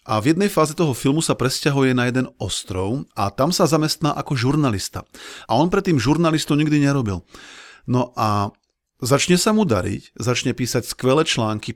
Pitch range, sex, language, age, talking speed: 110-150 Hz, male, Slovak, 40-59, 170 wpm